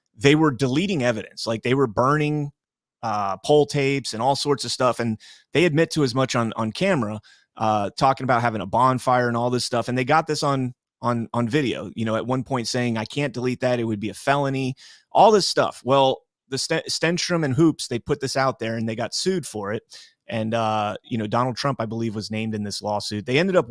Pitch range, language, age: 110-145 Hz, English, 30-49